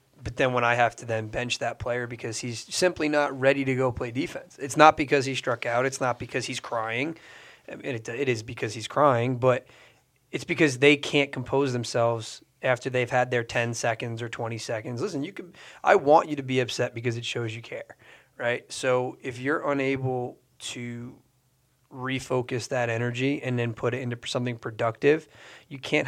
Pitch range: 120-135 Hz